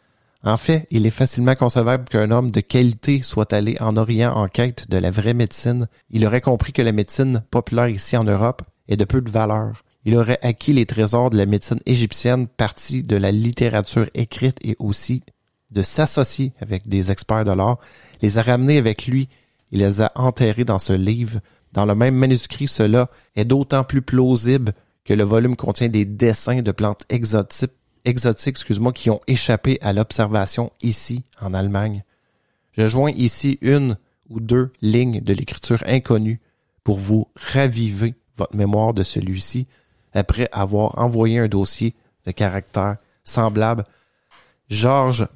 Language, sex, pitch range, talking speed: English, male, 105-125 Hz, 165 wpm